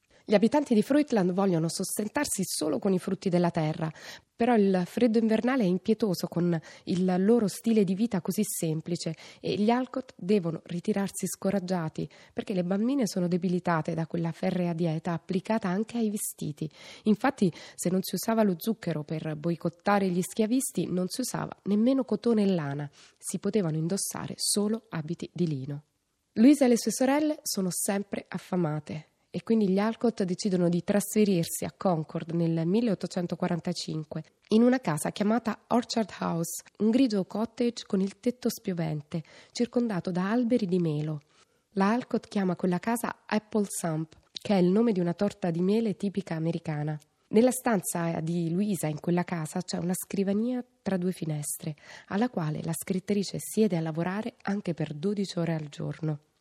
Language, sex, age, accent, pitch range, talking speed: Italian, female, 20-39, native, 170-220 Hz, 160 wpm